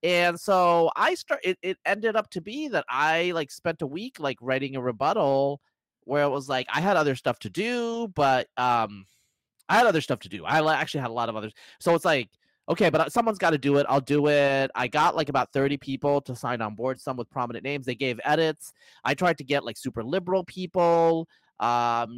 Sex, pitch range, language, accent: male, 120-165 Hz, English, American